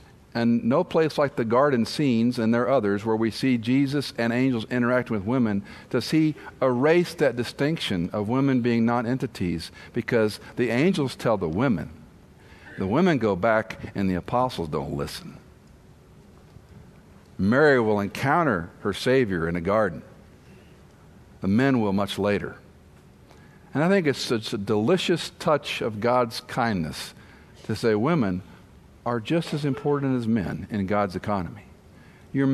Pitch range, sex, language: 105-130 Hz, male, English